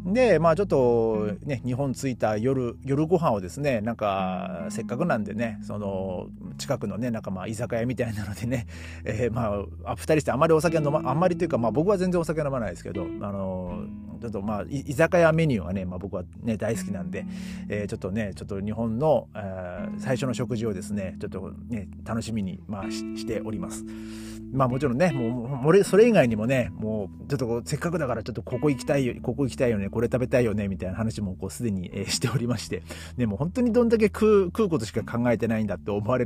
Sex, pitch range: male, 105-155 Hz